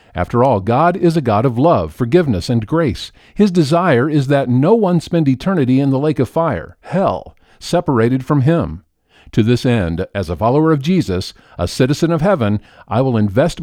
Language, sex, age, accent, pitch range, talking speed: English, male, 50-69, American, 105-155 Hz, 190 wpm